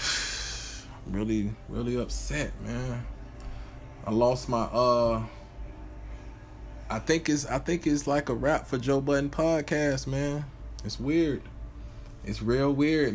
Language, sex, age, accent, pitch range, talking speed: English, male, 20-39, American, 115-145 Hz, 125 wpm